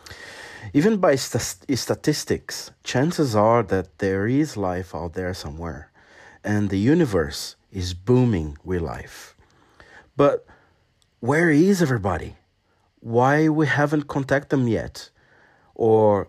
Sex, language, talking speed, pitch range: male, English, 110 wpm, 95-125 Hz